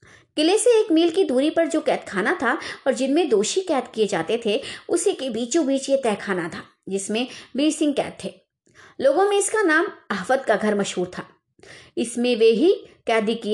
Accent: native